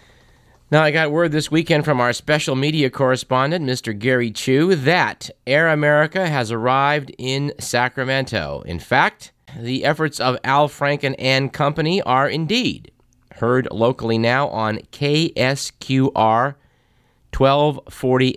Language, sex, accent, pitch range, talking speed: English, male, American, 110-145 Hz, 125 wpm